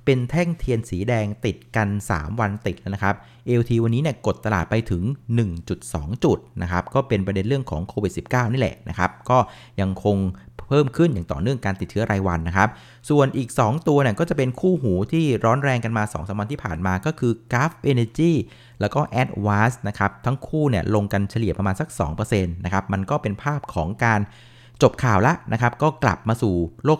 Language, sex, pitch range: Thai, male, 100-130 Hz